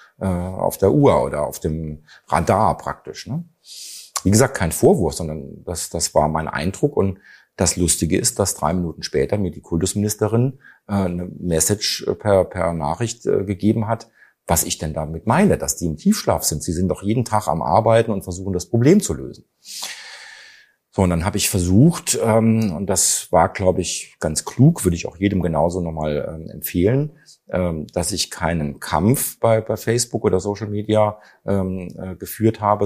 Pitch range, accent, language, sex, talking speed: 85-110 Hz, German, German, male, 170 wpm